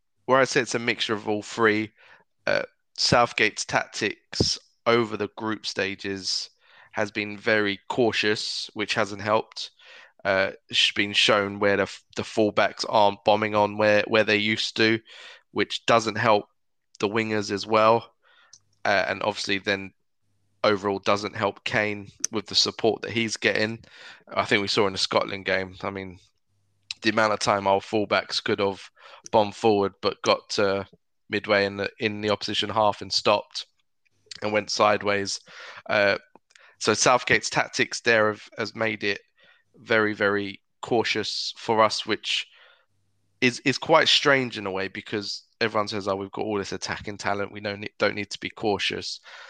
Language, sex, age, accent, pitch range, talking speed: English, male, 20-39, British, 100-110 Hz, 165 wpm